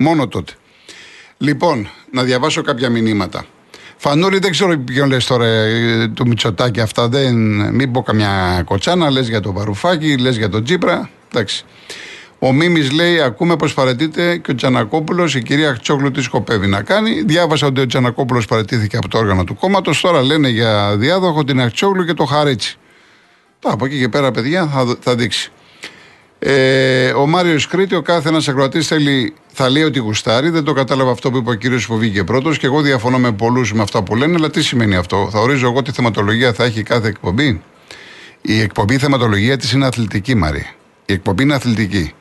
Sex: male